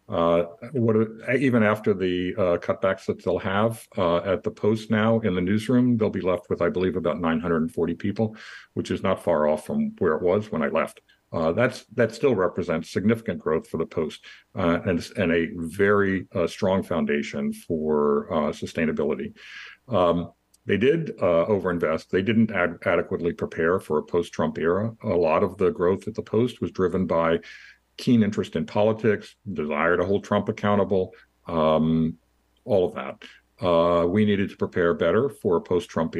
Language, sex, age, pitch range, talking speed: English, male, 50-69, 85-110 Hz, 180 wpm